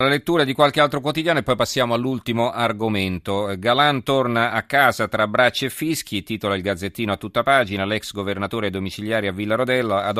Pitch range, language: 95-115 Hz, Italian